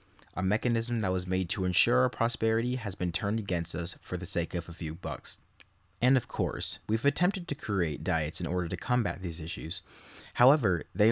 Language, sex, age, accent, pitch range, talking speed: English, male, 30-49, American, 85-110 Hz, 200 wpm